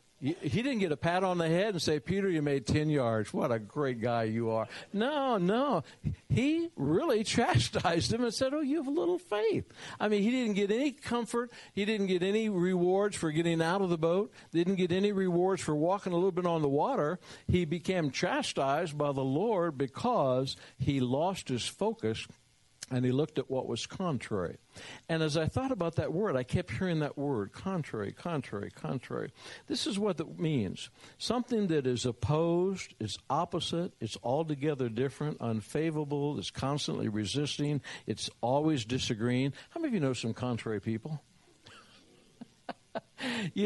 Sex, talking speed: male, 175 wpm